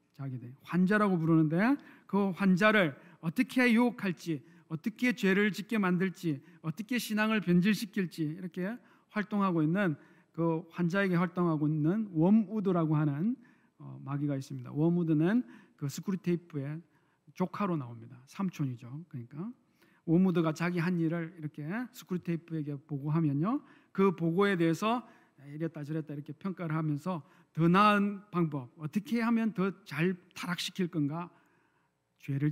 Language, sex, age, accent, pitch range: Korean, male, 40-59, native, 155-210 Hz